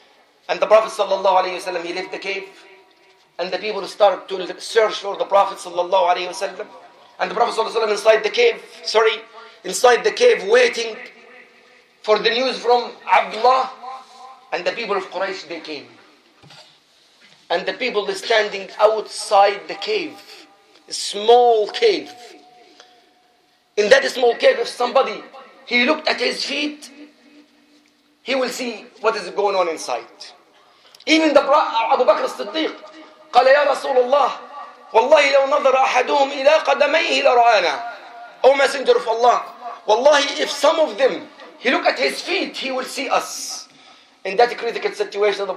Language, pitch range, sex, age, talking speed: English, 195-275 Hz, male, 40-59, 130 wpm